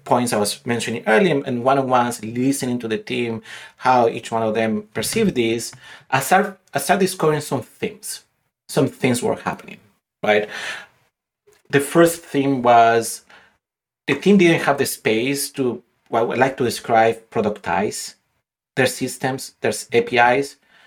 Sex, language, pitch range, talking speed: male, English, 115-145 Hz, 145 wpm